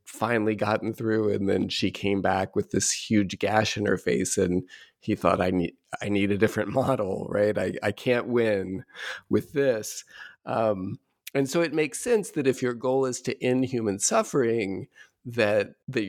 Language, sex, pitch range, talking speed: English, male, 100-130 Hz, 185 wpm